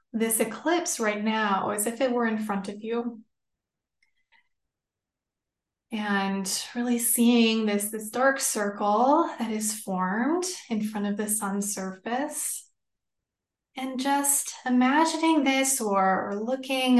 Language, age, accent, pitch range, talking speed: English, 20-39, American, 205-260 Hz, 125 wpm